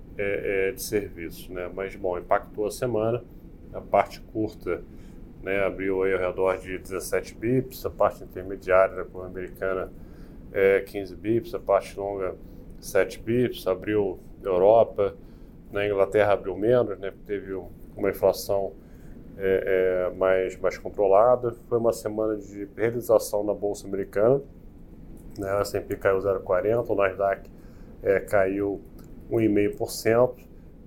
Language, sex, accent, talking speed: Portuguese, male, Brazilian, 130 wpm